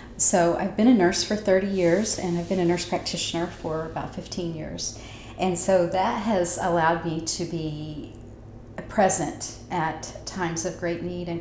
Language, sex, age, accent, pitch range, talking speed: English, female, 40-59, American, 160-190 Hz, 175 wpm